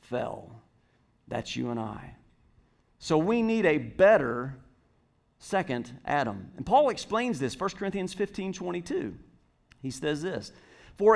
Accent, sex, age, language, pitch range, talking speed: American, male, 40-59, English, 145-210 Hz, 130 wpm